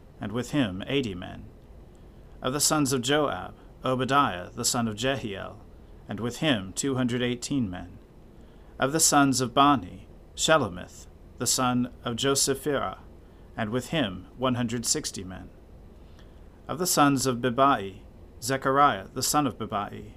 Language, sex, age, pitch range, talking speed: English, male, 40-59, 90-130 Hz, 145 wpm